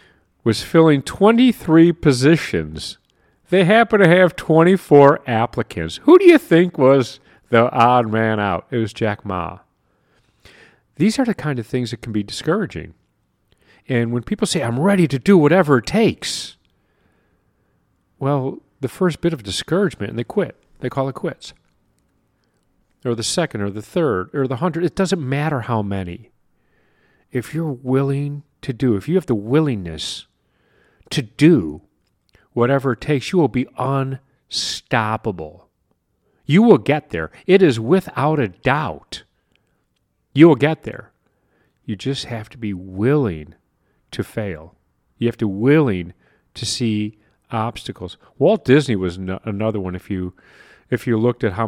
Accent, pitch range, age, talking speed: American, 105-150 Hz, 50-69, 155 wpm